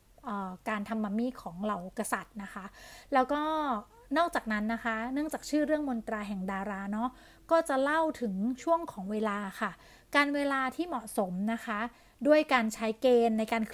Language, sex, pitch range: Thai, female, 220-270 Hz